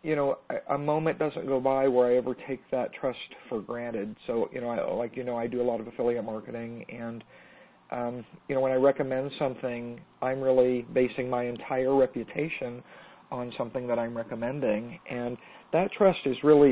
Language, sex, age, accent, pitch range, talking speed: English, male, 40-59, American, 120-145 Hz, 190 wpm